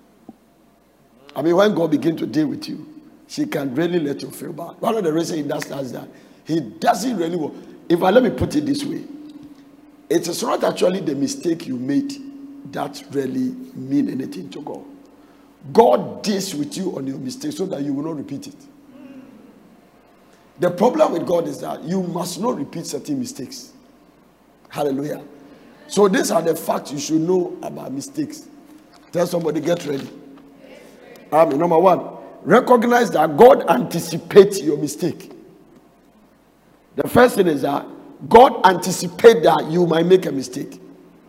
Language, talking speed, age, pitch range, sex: English, 165 wpm, 50-69, 165-275 Hz, male